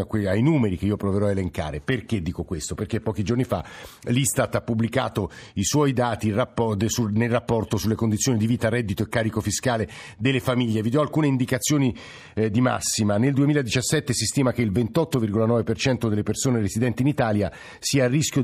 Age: 50-69